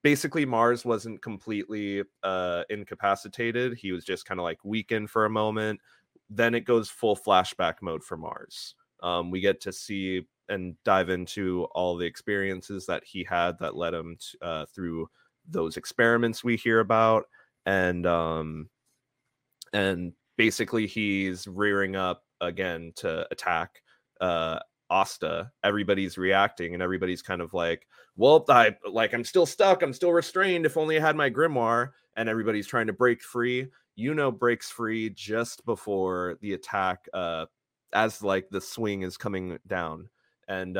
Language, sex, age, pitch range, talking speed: English, male, 20-39, 90-120 Hz, 155 wpm